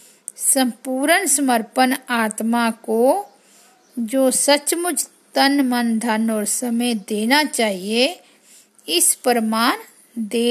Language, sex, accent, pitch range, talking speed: Hindi, female, native, 230-280 Hz, 90 wpm